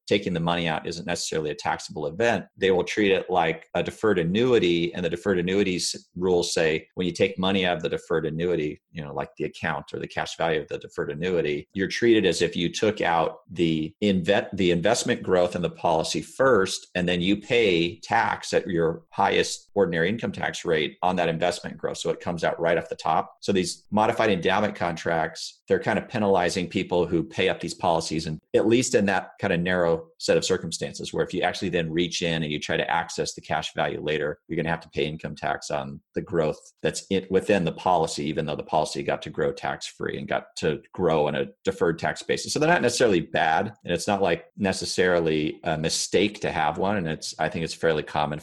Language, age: English, 40-59